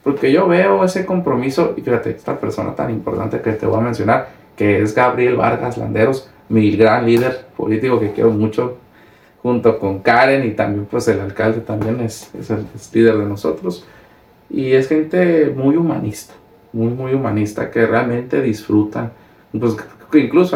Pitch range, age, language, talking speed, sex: 110-135 Hz, 40-59, Spanish, 165 wpm, male